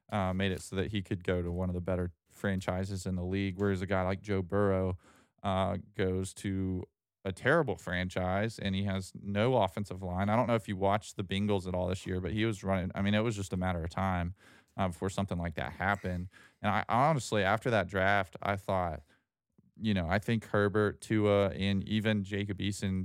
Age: 20-39